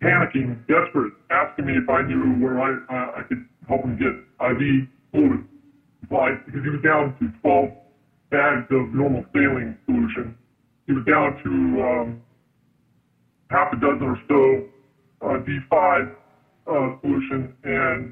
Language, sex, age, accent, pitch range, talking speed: English, female, 40-59, American, 130-150 Hz, 145 wpm